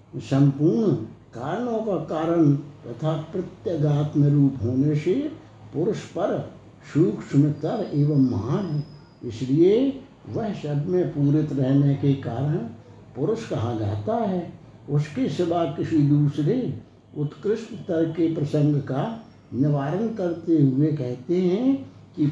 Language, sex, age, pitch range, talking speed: Hindi, male, 60-79, 135-180 Hz, 115 wpm